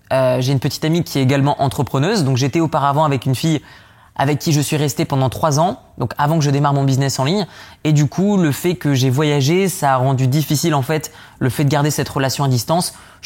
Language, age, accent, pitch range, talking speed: French, 20-39, French, 130-155 Hz, 250 wpm